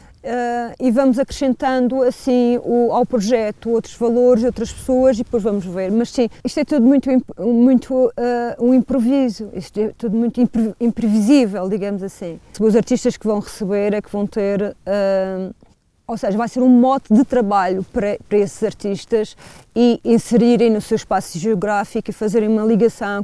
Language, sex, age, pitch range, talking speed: Portuguese, female, 30-49, 205-245 Hz, 170 wpm